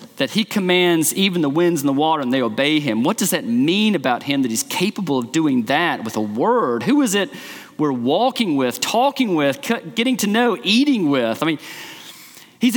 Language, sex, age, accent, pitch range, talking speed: English, male, 40-59, American, 170-245 Hz, 205 wpm